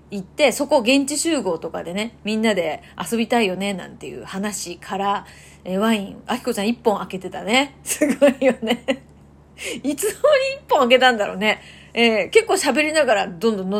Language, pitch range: Japanese, 195-275 Hz